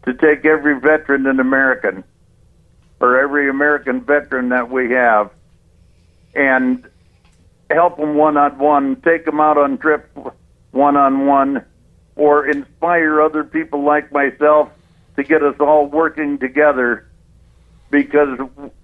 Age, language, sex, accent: 60-79, English, male, American